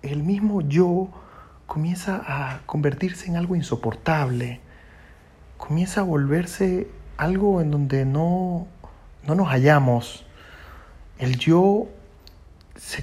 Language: Spanish